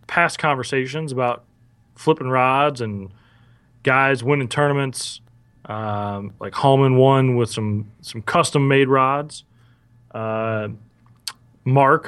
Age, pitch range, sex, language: 30-49, 115-140 Hz, male, English